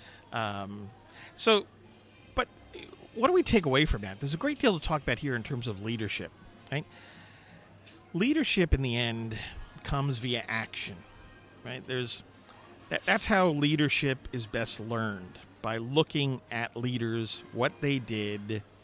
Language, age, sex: English, 50-69, male